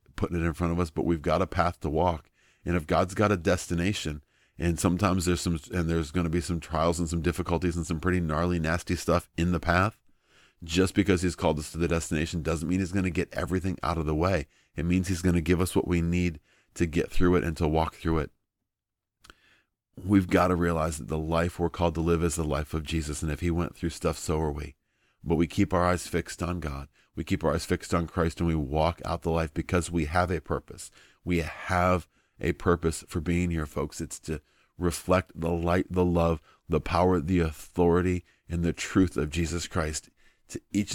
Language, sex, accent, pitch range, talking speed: English, male, American, 80-90 Hz, 230 wpm